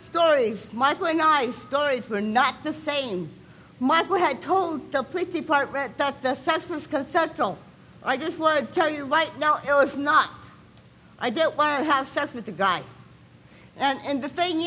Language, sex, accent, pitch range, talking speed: English, female, American, 275-330 Hz, 180 wpm